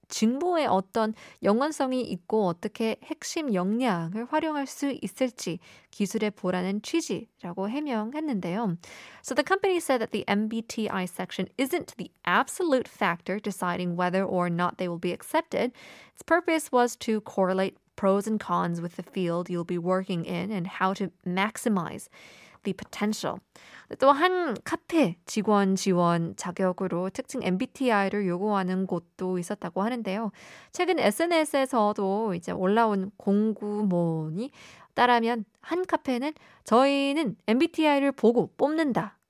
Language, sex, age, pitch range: Korean, female, 20-39, 185-255 Hz